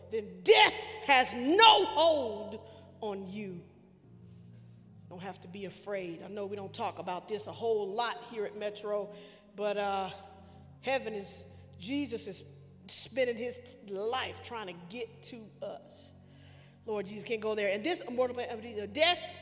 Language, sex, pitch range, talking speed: English, female, 200-310 Hz, 150 wpm